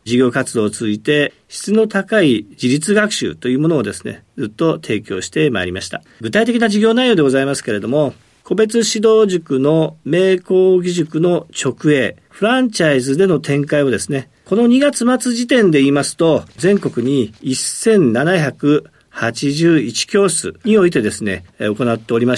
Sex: male